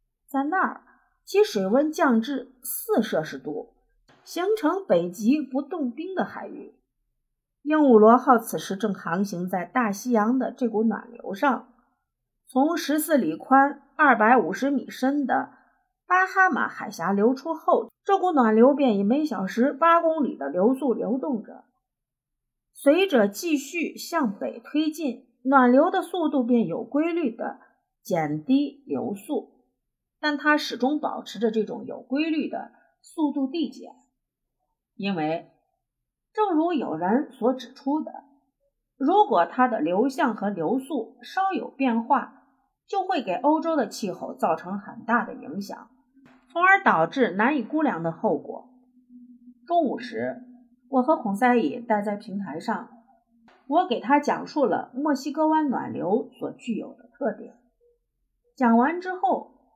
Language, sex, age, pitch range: Chinese, female, 50-69, 235-300 Hz